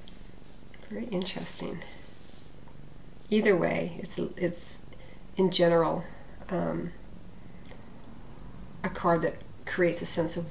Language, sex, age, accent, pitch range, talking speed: English, female, 40-59, American, 165-185 Hz, 90 wpm